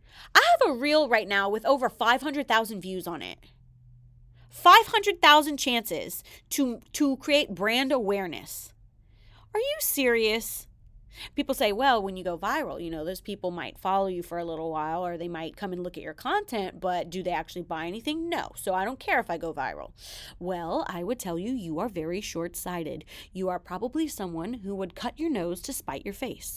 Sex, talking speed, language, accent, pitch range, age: female, 195 wpm, English, American, 170-250 Hz, 30-49